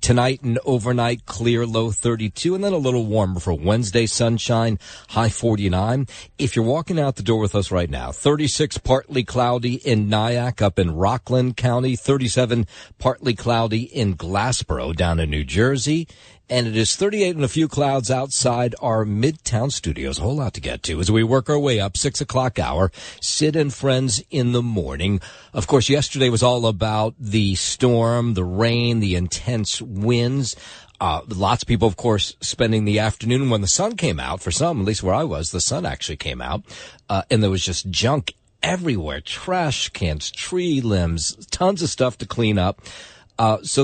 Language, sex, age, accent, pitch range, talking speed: English, male, 50-69, American, 100-130 Hz, 185 wpm